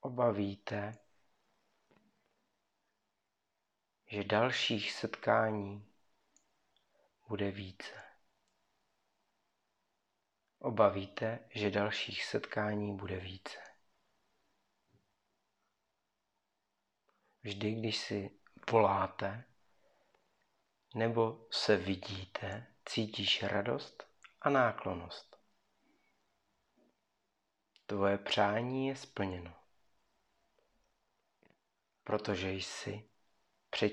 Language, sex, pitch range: Czech, male, 100-115 Hz